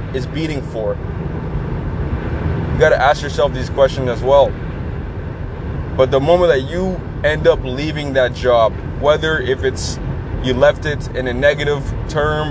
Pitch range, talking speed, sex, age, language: 120-150 Hz, 155 wpm, male, 20-39, English